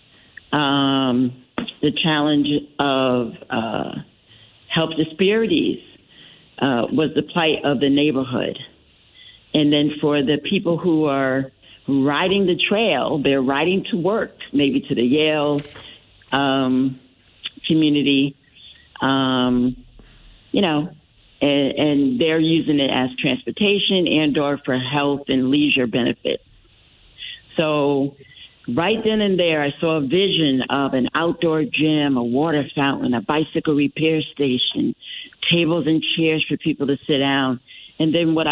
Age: 50-69